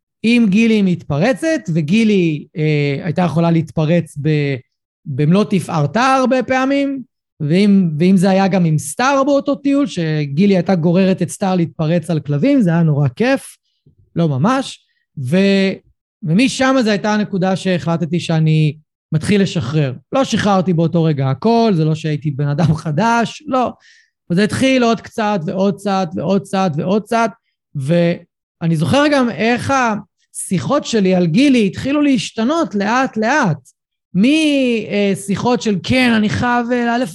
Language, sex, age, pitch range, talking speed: Hebrew, male, 30-49, 170-240 Hz, 130 wpm